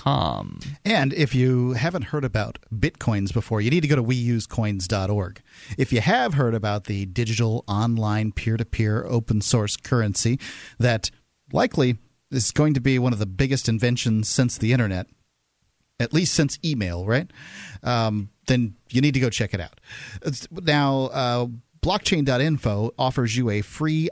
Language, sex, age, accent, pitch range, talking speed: English, male, 40-59, American, 110-140 Hz, 150 wpm